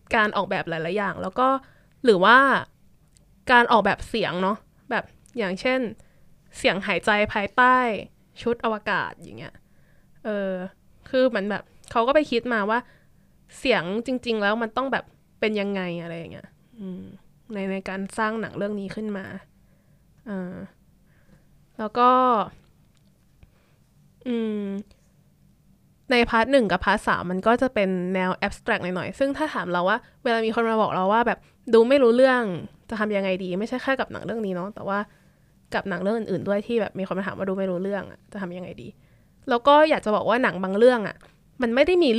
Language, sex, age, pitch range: Thai, female, 20-39, 195-245 Hz